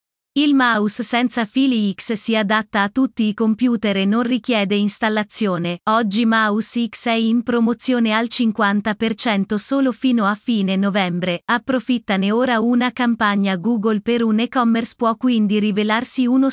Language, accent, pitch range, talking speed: Italian, native, 210-245 Hz, 145 wpm